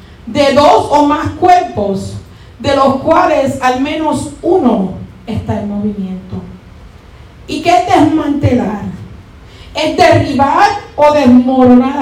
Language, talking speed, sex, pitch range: Spanish, 110 wpm, female, 205-310 Hz